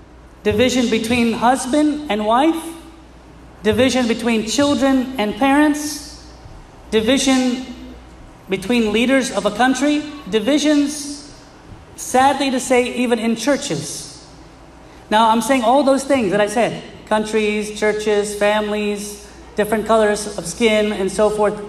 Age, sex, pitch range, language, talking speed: 30-49, male, 225-275 Hz, English, 115 wpm